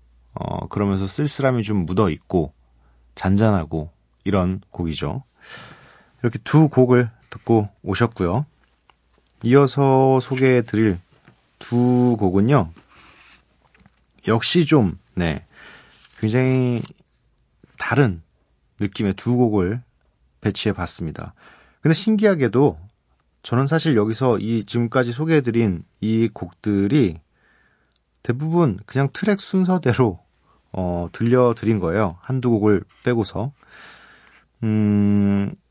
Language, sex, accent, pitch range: Korean, male, native, 90-130 Hz